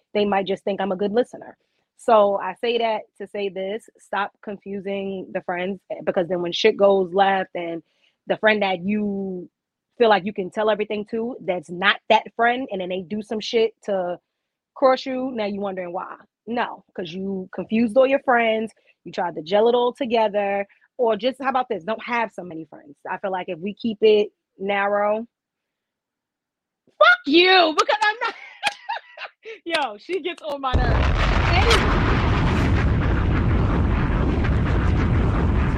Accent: American